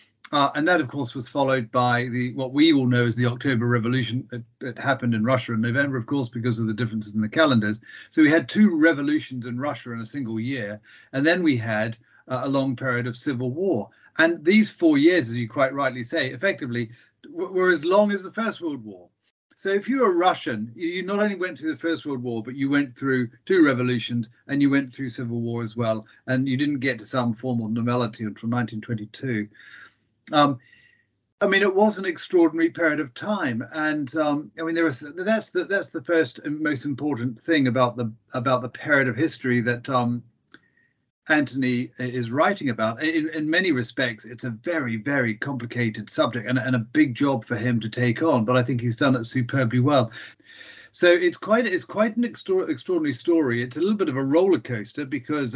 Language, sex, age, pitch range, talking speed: English, male, 40-59, 120-160 Hz, 215 wpm